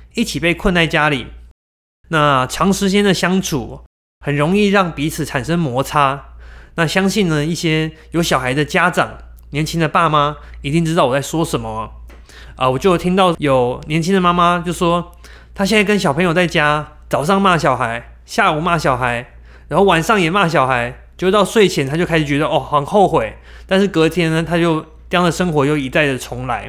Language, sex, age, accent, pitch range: Chinese, male, 20-39, native, 130-180 Hz